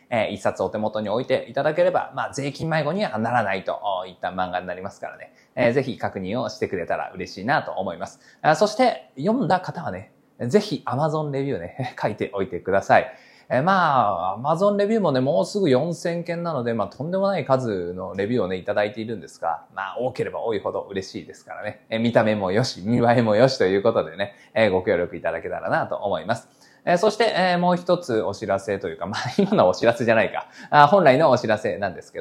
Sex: male